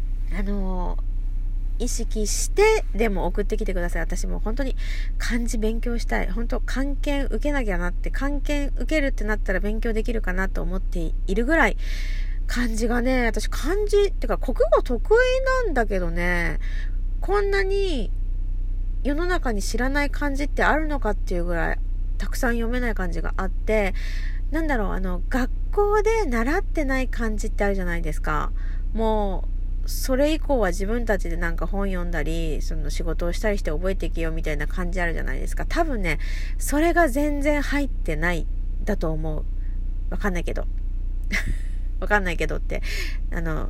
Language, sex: Japanese, female